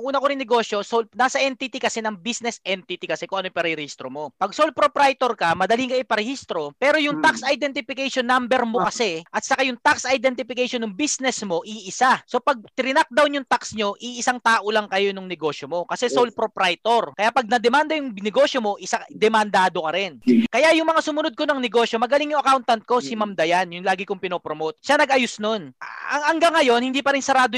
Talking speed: 200 wpm